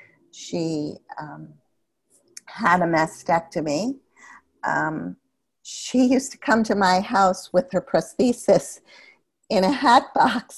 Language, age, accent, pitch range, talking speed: English, 50-69, American, 165-220 Hz, 115 wpm